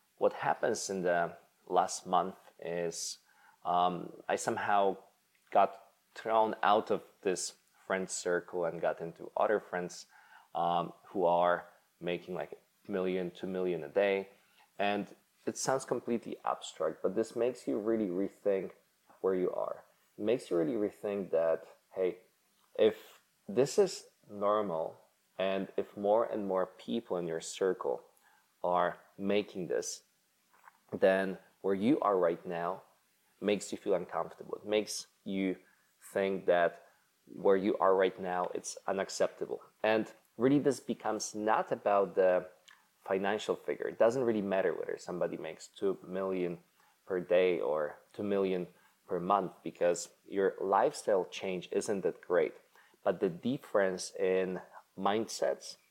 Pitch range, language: 90-120 Hz, English